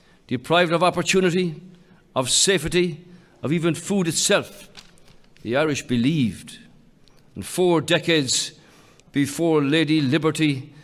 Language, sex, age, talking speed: English, male, 50-69, 100 wpm